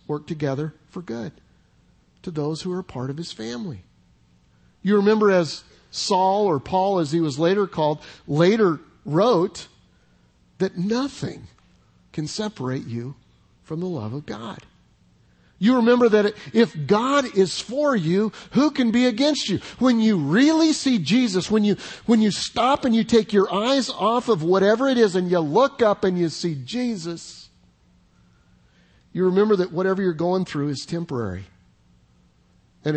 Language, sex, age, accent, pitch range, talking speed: English, male, 50-69, American, 135-210 Hz, 155 wpm